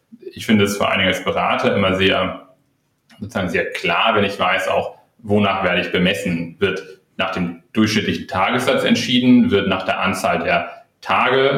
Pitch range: 95-115 Hz